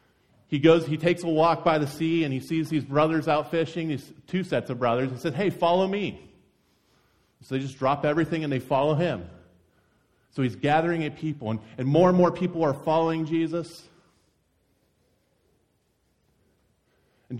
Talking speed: 170 wpm